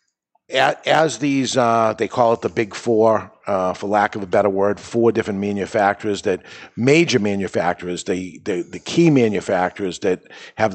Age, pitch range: 50-69, 100-130 Hz